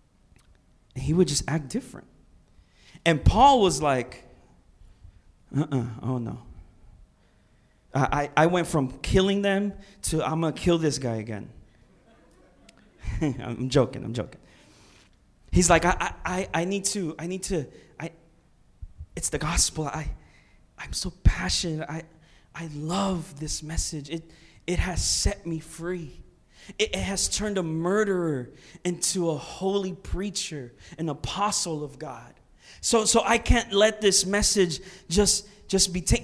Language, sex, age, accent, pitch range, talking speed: English, male, 20-39, American, 150-245 Hz, 140 wpm